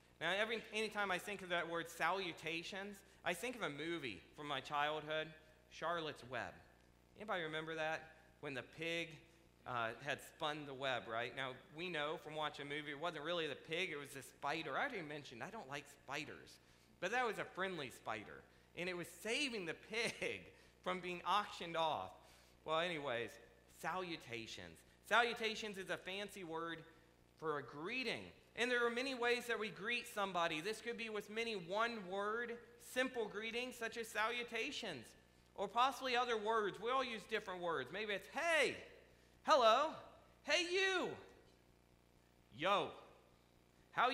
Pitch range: 145-220 Hz